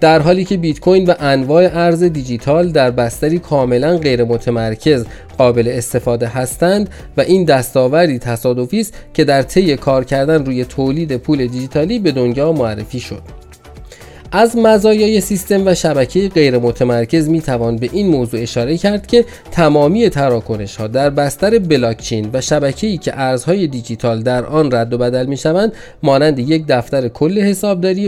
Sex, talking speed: male, 155 wpm